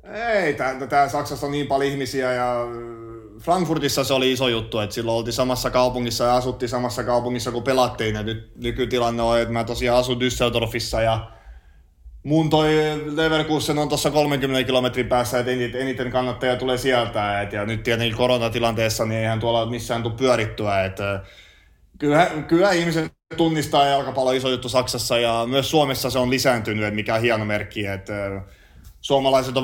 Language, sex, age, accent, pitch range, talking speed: Finnish, male, 30-49, native, 115-135 Hz, 165 wpm